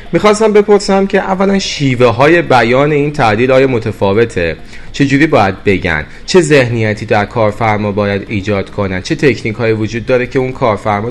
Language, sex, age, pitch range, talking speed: Persian, male, 30-49, 105-145 Hz, 155 wpm